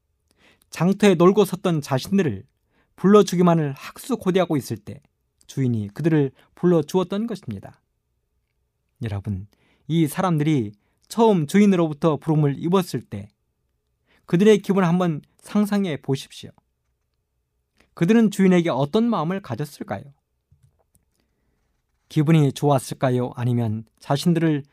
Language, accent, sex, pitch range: Korean, native, male, 120-195 Hz